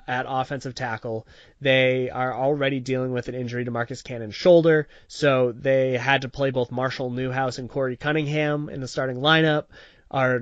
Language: English